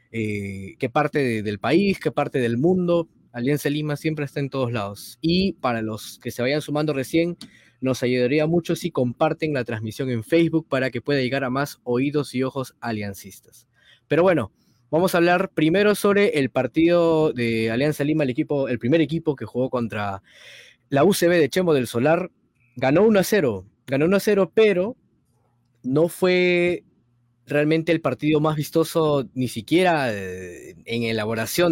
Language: Spanish